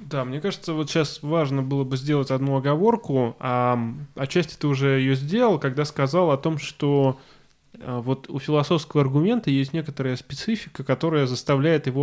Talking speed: 160 wpm